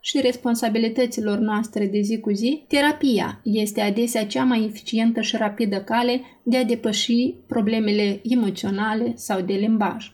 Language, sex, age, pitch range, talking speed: Romanian, female, 20-39, 215-250 Hz, 140 wpm